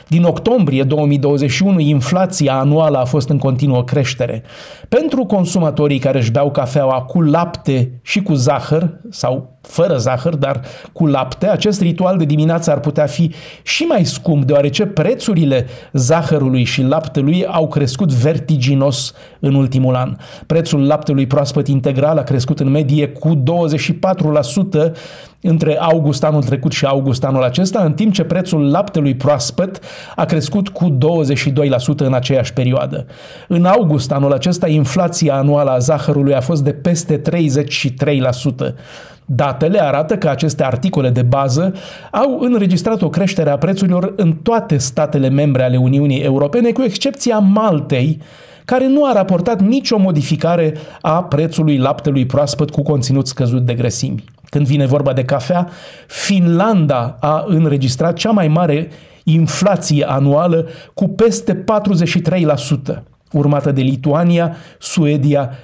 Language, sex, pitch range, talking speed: Romanian, male, 140-175 Hz, 135 wpm